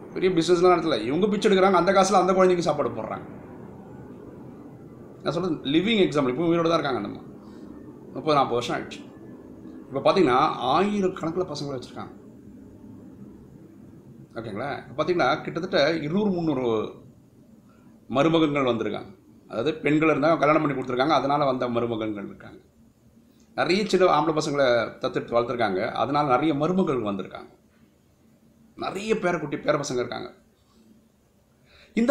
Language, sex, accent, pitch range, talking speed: Tamil, male, native, 120-180 Hz, 125 wpm